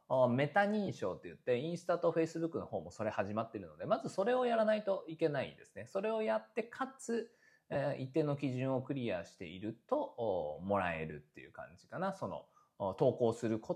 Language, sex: Japanese, male